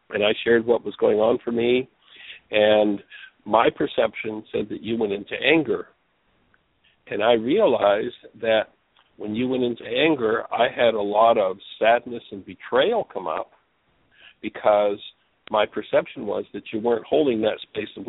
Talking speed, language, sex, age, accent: 160 wpm, English, male, 60-79, American